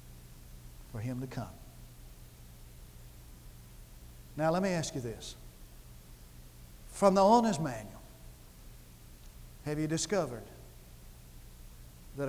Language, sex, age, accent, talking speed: English, male, 60-79, American, 90 wpm